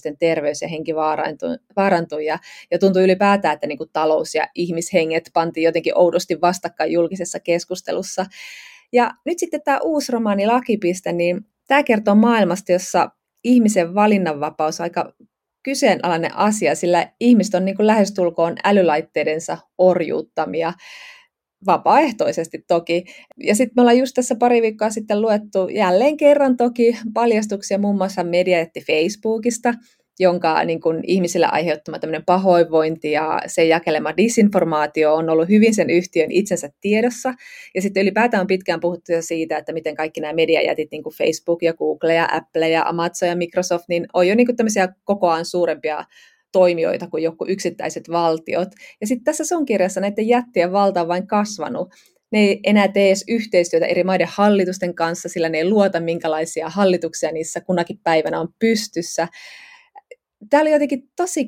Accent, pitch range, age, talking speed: native, 165-215 Hz, 20-39, 145 wpm